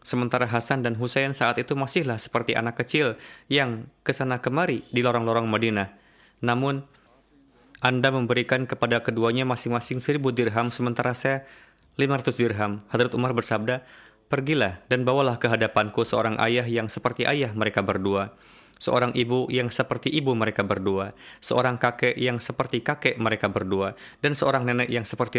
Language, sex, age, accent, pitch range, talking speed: Indonesian, male, 20-39, native, 115-130 Hz, 145 wpm